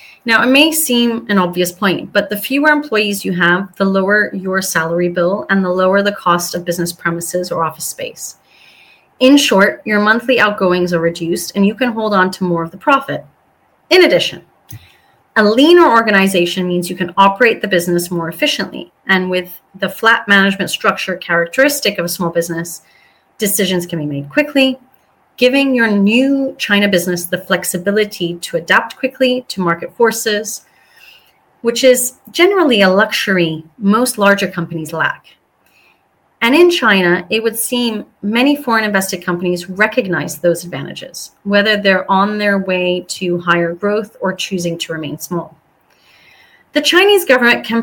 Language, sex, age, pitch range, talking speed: English, female, 30-49, 175-230 Hz, 160 wpm